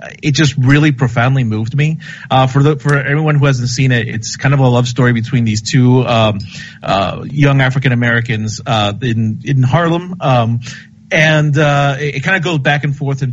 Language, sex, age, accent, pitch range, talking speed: English, male, 30-49, American, 115-140 Hz, 205 wpm